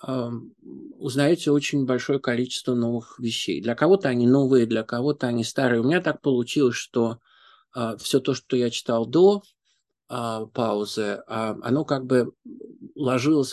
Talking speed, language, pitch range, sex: 145 wpm, Ukrainian, 115-140 Hz, male